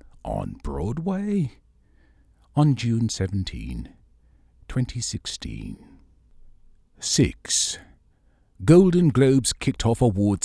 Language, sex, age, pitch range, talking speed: English, male, 50-69, 80-120 Hz, 70 wpm